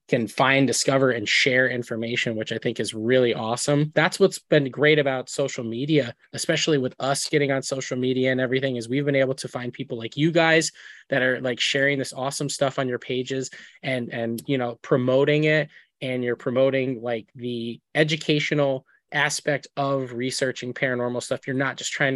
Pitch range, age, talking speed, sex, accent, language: 120-145 Hz, 20-39, 185 wpm, male, American, English